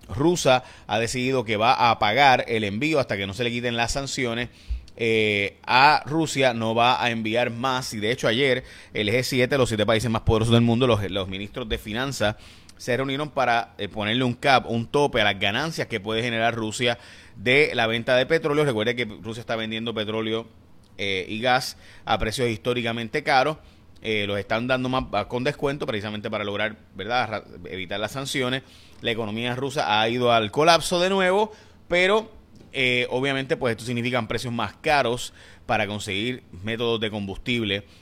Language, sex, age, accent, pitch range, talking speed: Spanish, male, 30-49, Venezuelan, 110-135 Hz, 180 wpm